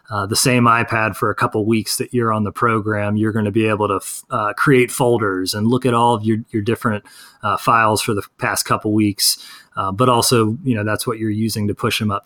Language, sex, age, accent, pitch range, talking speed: English, male, 30-49, American, 105-125 Hz, 255 wpm